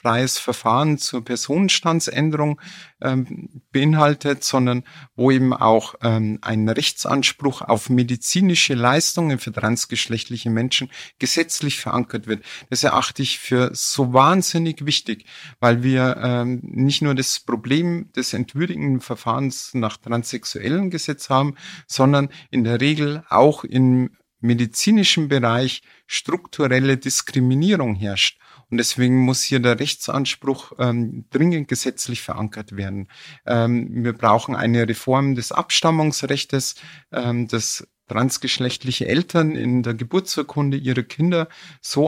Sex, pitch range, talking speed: male, 120-145 Hz, 115 wpm